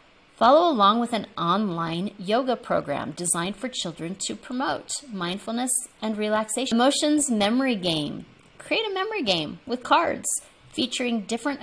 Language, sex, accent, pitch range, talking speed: English, female, American, 180-250 Hz, 135 wpm